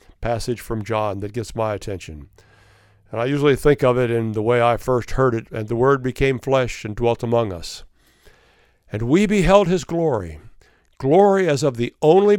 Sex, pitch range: male, 110-140 Hz